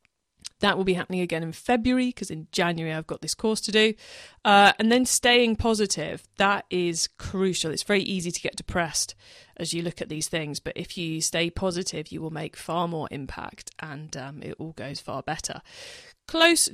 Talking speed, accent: 195 wpm, British